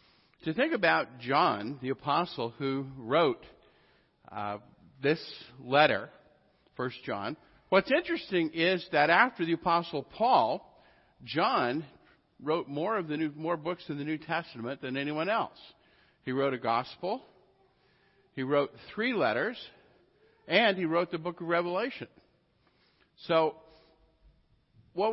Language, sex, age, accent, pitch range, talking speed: English, male, 50-69, American, 135-175 Hz, 125 wpm